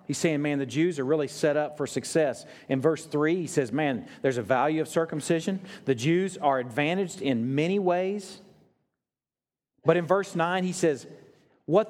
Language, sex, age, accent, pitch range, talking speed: English, male, 40-59, American, 145-215 Hz, 180 wpm